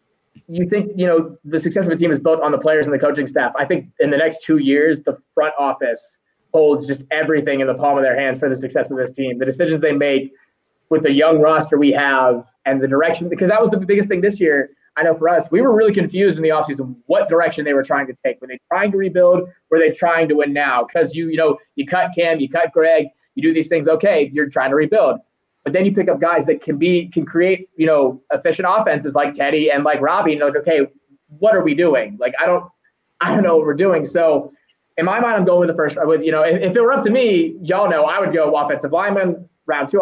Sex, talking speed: male, 265 wpm